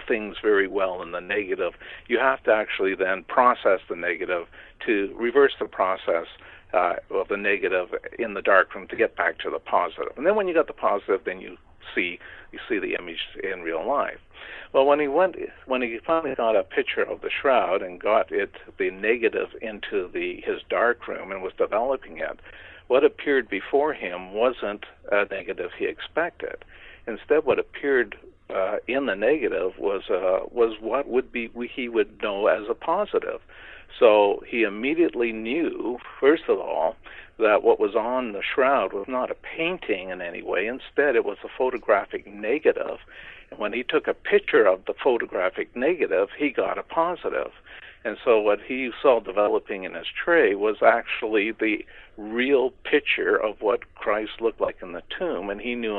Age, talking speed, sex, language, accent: 60-79, 180 wpm, male, English, American